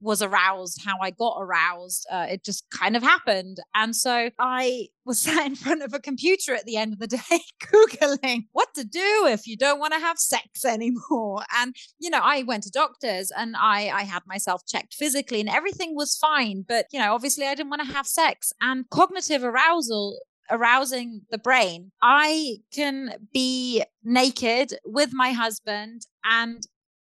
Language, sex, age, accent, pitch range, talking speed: English, female, 30-49, British, 215-280 Hz, 180 wpm